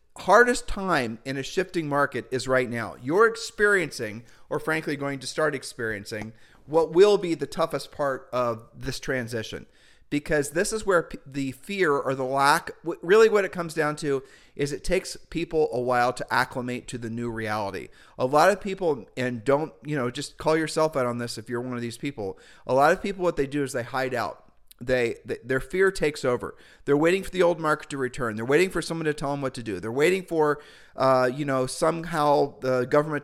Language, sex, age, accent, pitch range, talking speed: English, male, 40-59, American, 125-165 Hz, 210 wpm